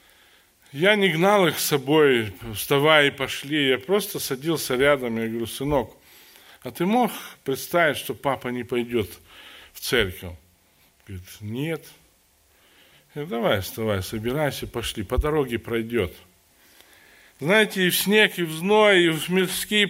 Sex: male